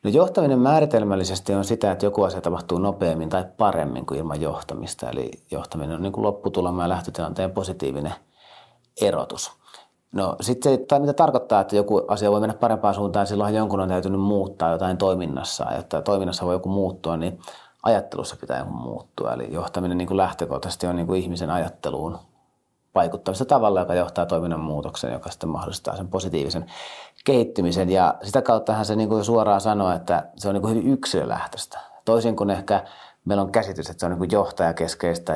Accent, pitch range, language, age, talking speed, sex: native, 85-105 Hz, Finnish, 30-49, 175 wpm, male